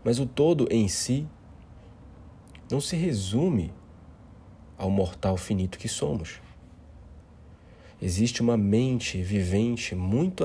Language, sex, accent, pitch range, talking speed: Portuguese, male, Brazilian, 85-110 Hz, 105 wpm